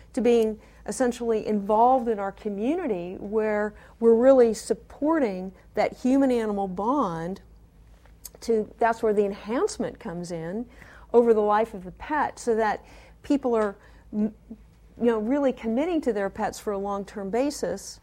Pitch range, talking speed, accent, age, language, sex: 200-235 Hz, 140 wpm, American, 50-69, English, female